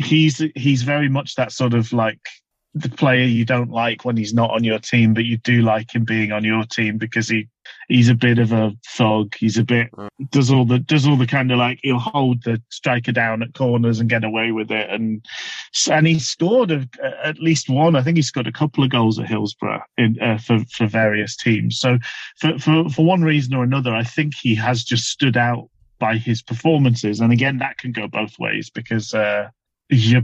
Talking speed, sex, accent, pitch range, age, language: 220 wpm, male, British, 110-140 Hz, 30-49, English